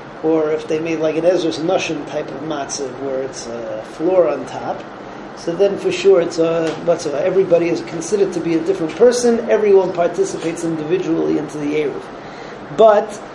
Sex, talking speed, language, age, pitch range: male, 175 wpm, English, 40-59, 160-200 Hz